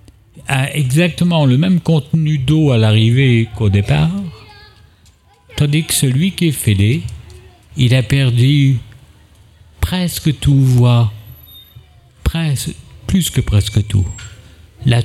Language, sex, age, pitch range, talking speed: French, male, 60-79, 105-140 Hz, 110 wpm